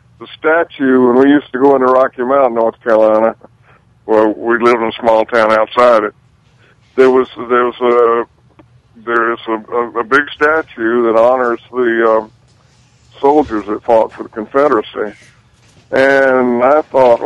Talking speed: 155 wpm